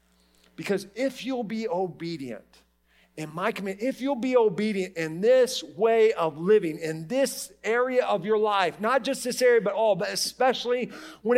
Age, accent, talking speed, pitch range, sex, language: 40-59, American, 170 wpm, 155-225 Hz, male, English